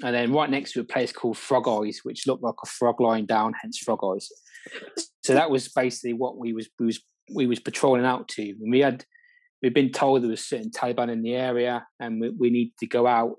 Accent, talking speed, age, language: British, 240 wpm, 20-39, English